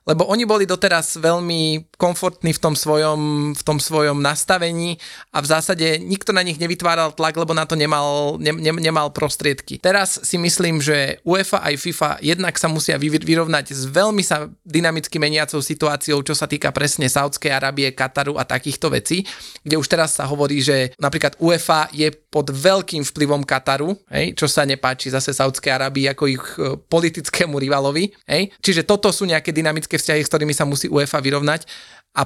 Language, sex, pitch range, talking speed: Slovak, male, 145-165 Hz, 175 wpm